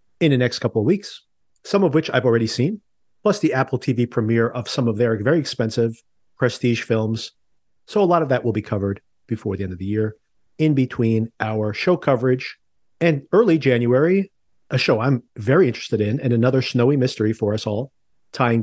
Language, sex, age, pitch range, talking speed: English, male, 40-59, 110-140 Hz, 195 wpm